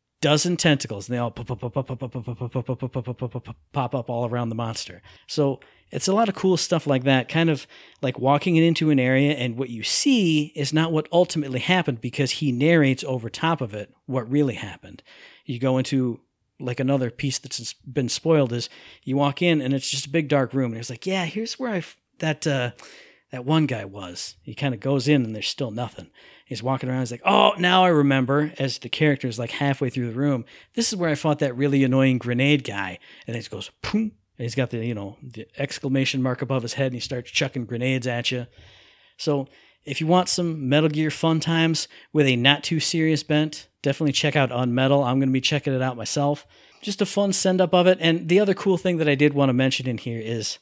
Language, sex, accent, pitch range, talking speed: English, male, American, 125-155 Hz, 220 wpm